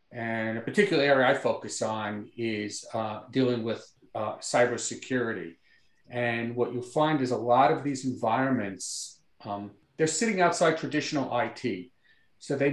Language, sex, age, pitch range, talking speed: English, male, 50-69, 120-165 Hz, 145 wpm